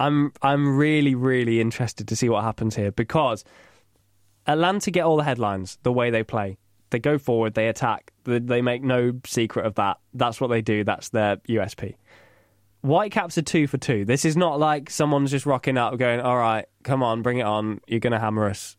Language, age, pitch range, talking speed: English, 10-29, 105-150 Hz, 205 wpm